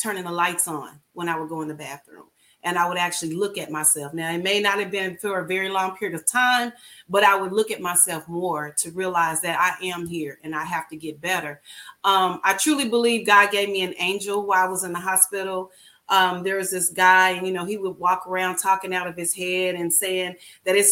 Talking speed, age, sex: 245 wpm, 30-49, female